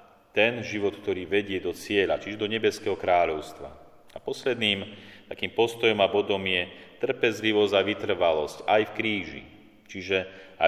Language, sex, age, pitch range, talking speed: Slovak, male, 40-59, 90-105 Hz, 140 wpm